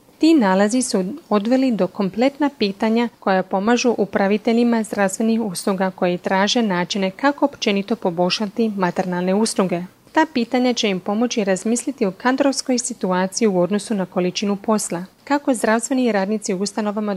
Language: Croatian